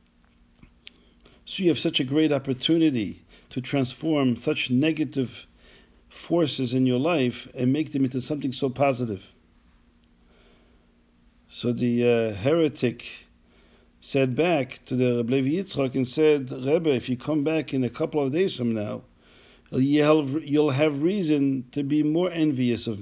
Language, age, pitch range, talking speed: English, 50-69, 115-155 Hz, 140 wpm